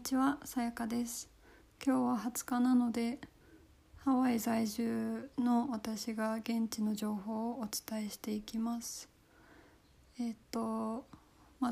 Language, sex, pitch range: Japanese, female, 200-235 Hz